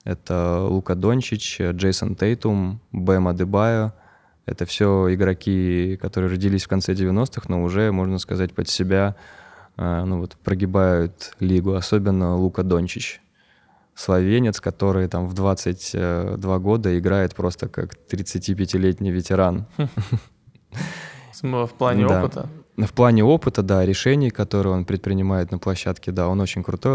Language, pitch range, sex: Russian, 95-110 Hz, male